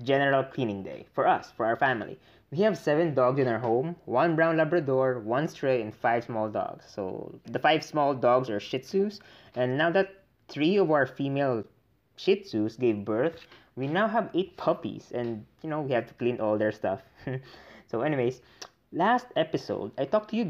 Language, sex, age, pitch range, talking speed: English, male, 20-39, 115-160 Hz, 195 wpm